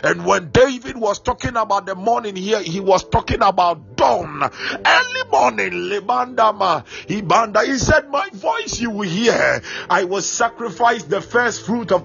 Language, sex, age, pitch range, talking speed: English, male, 50-69, 185-225 Hz, 155 wpm